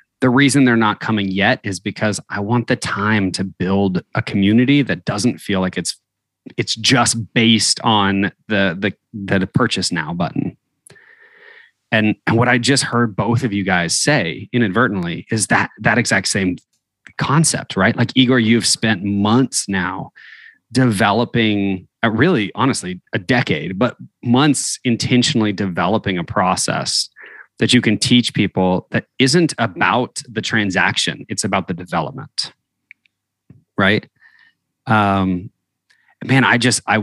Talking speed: 140 wpm